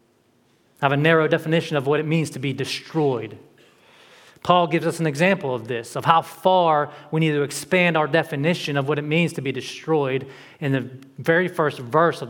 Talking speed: 200 wpm